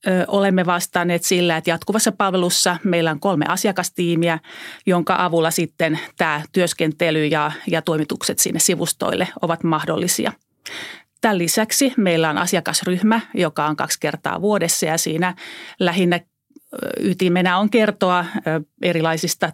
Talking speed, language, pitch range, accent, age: 120 wpm, Finnish, 165-210 Hz, native, 30-49